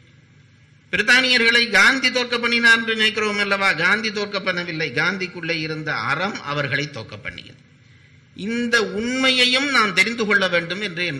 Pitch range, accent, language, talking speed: 125-165 Hz, Indian, English, 90 wpm